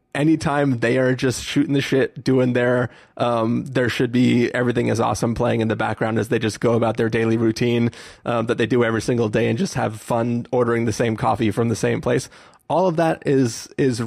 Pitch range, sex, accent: 115-145 Hz, male, American